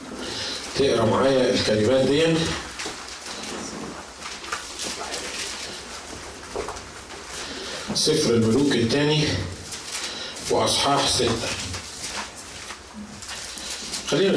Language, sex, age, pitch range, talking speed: Arabic, male, 50-69, 115-140 Hz, 40 wpm